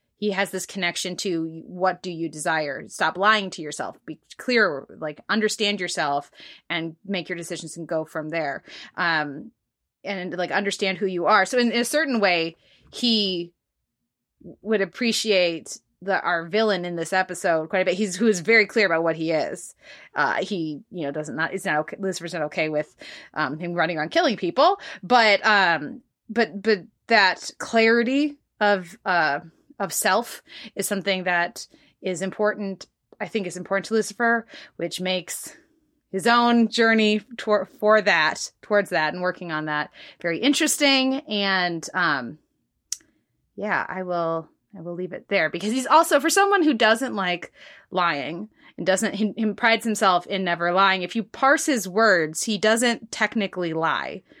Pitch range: 175-220 Hz